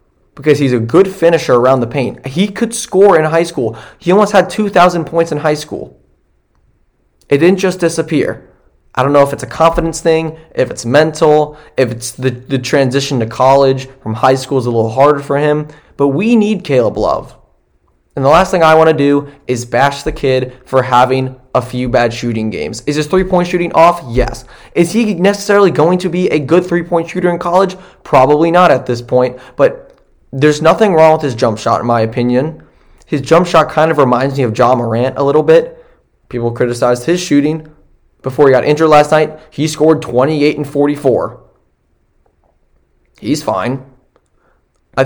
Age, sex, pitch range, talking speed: 20-39, male, 125-165 Hz, 190 wpm